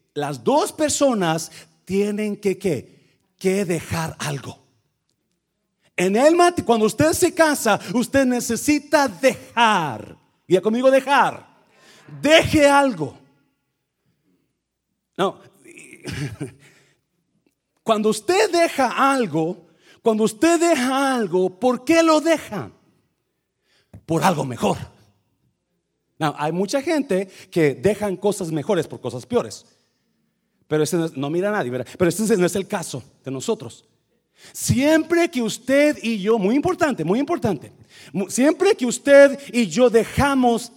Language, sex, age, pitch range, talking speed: Spanish, male, 40-59, 185-280 Hz, 120 wpm